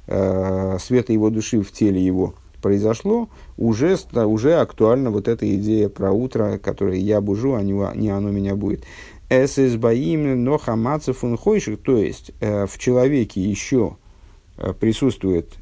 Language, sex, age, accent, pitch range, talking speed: Russian, male, 50-69, native, 100-125 Hz, 115 wpm